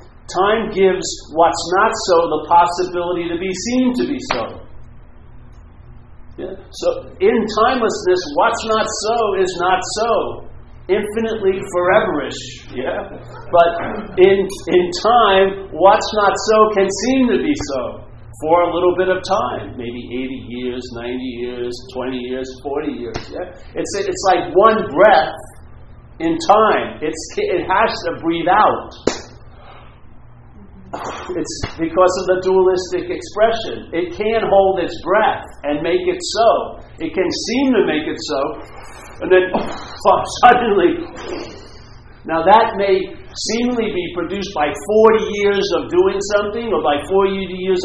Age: 50-69